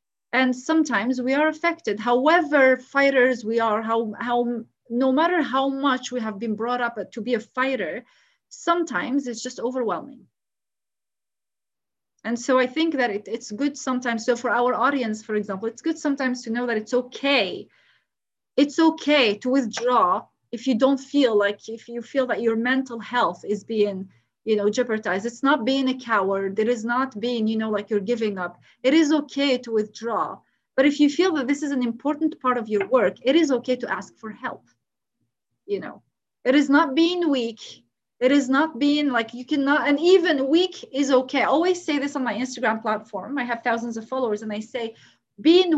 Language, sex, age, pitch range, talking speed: English, female, 30-49, 225-280 Hz, 195 wpm